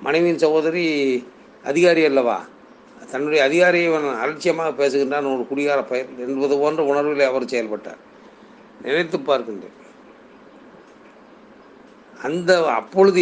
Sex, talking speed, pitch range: male, 95 wpm, 125-155 Hz